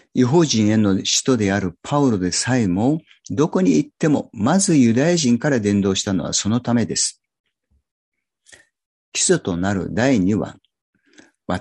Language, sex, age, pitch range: Japanese, male, 50-69, 105-145 Hz